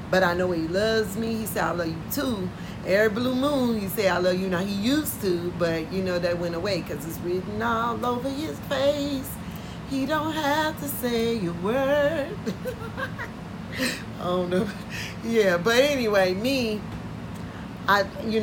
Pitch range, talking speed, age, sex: 175-230 Hz, 175 wpm, 40-59, female